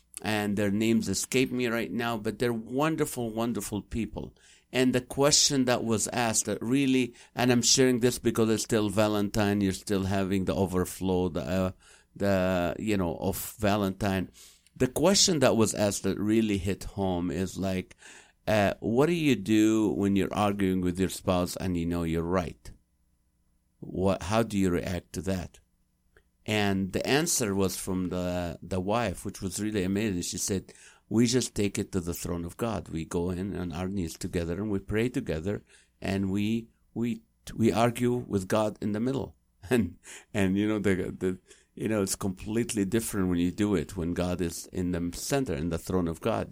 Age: 50-69